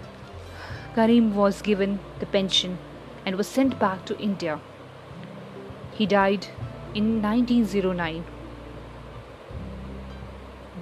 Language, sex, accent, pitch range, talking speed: English, female, Indian, 180-255 Hz, 85 wpm